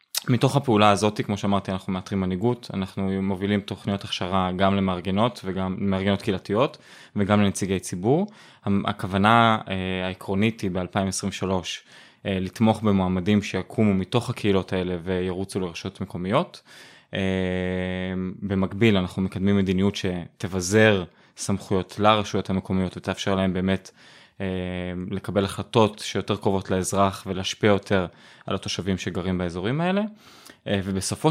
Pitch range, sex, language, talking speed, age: 95-105 Hz, male, Hebrew, 105 wpm, 20-39